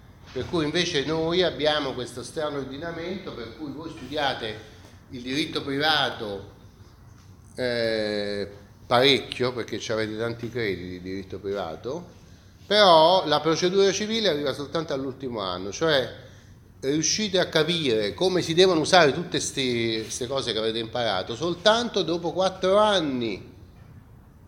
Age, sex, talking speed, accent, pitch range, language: 30-49, male, 125 wpm, native, 105-165 Hz, Italian